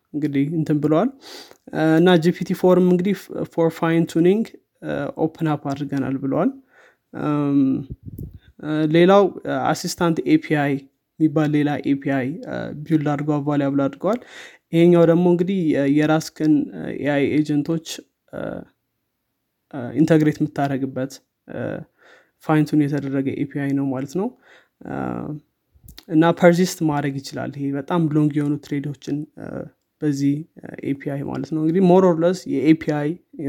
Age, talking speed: 20-39, 100 wpm